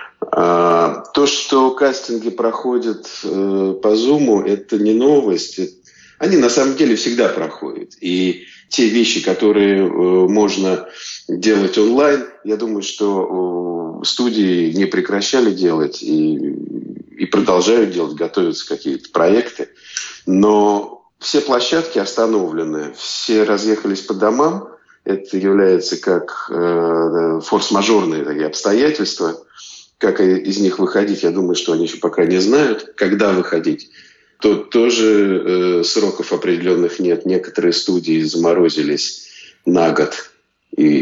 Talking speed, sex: 115 wpm, male